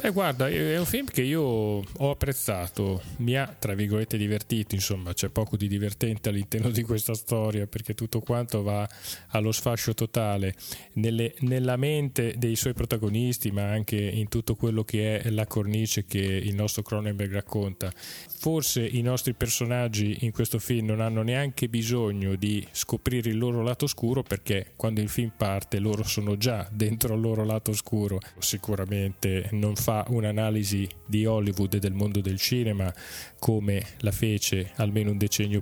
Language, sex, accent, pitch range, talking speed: Italian, male, native, 105-125 Hz, 160 wpm